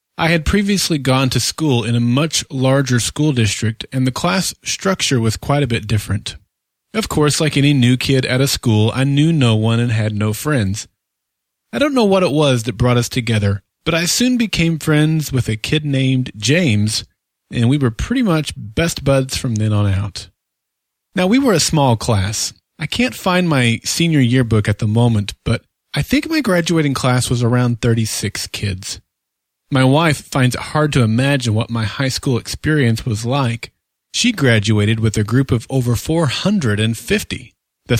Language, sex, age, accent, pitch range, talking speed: English, male, 30-49, American, 110-155 Hz, 185 wpm